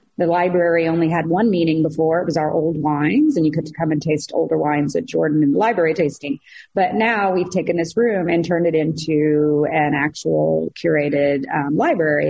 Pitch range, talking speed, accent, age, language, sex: 155-185 Hz, 195 wpm, American, 30-49, English, female